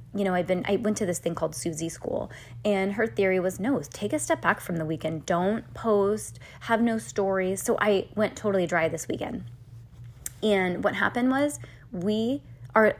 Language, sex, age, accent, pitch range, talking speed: English, female, 20-39, American, 155-210 Hz, 195 wpm